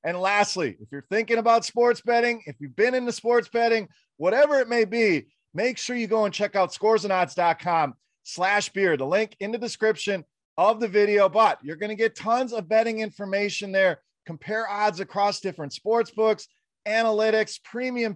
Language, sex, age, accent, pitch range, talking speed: English, male, 30-49, American, 175-230 Hz, 180 wpm